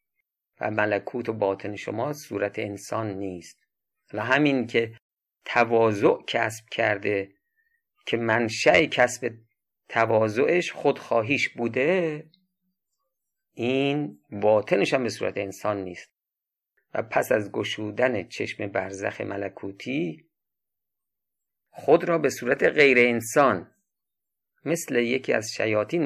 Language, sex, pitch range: Persian, male, 105-145 Hz